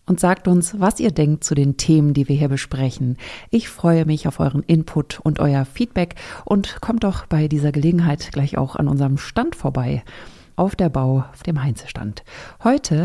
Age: 40-59